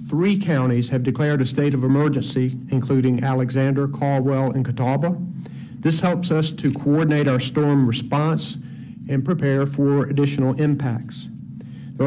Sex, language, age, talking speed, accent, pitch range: male, English, 50-69, 135 wpm, American, 125-150 Hz